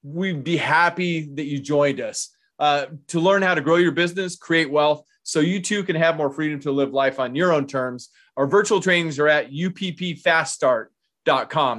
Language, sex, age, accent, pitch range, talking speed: English, male, 30-49, American, 140-175 Hz, 190 wpm